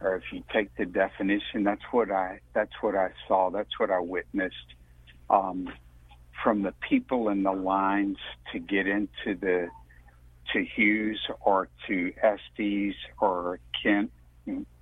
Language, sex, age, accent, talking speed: English, male, 60-79, American, 140 wpm